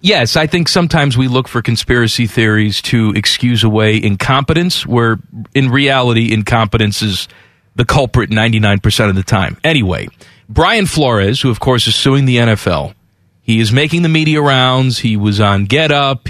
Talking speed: 160 wpm